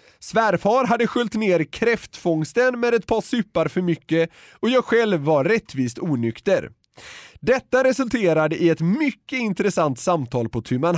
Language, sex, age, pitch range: Swedish, male, 30-49, 160-235 Hz